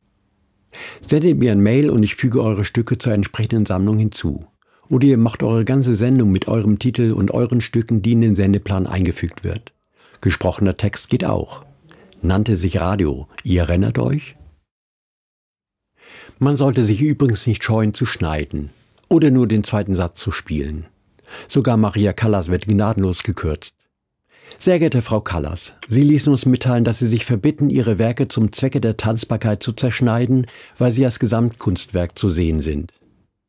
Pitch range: 95-125 Hz